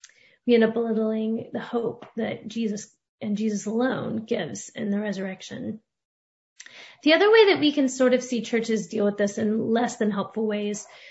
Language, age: English, 30-49